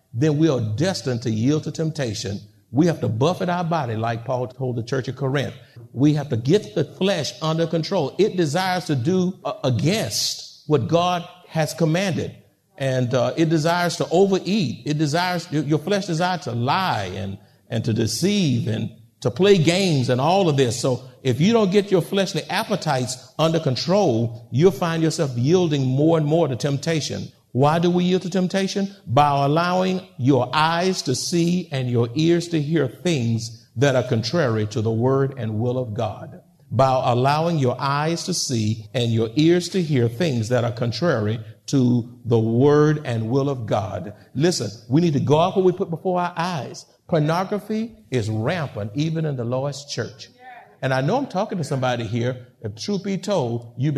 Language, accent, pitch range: English, American, 120-175 Hz